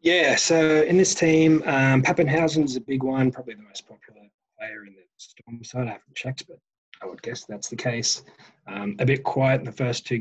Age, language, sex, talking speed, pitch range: 20-39, English, male, 225 wpm, 105-135 Hz